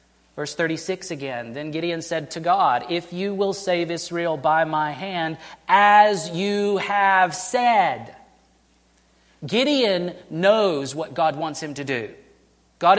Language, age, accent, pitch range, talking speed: English, 30-49, American, 150-190 Hz, 135 wpm